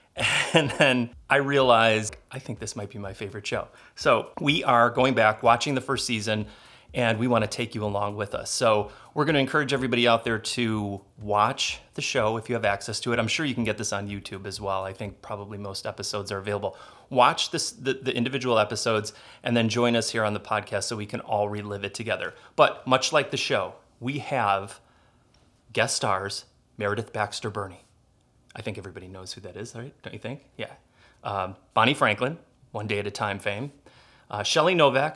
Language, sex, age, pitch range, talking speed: English, male, 30-49, 105-125 Hz, 205 wpm